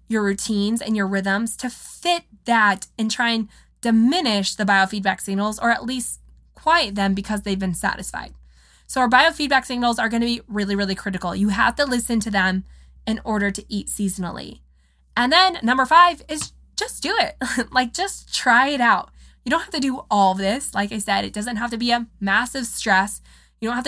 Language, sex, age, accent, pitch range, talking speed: English, female, 20-39, American, 205-255 Hz, 200 wpm